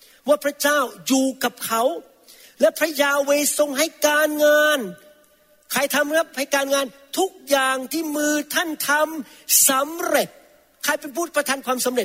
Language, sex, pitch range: Thai, male, 200-290 Hz